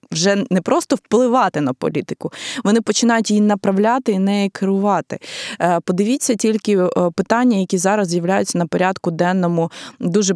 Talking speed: 140 wpm